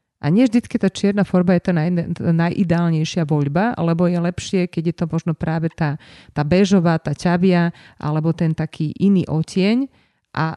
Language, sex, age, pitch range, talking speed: Slovak, female, 30-49, 155-185 Hz, 170 wpm